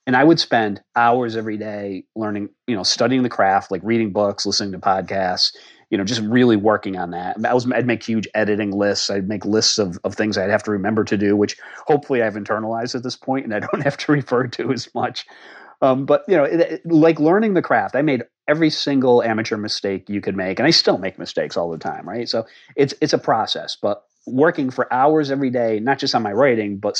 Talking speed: 235 wpm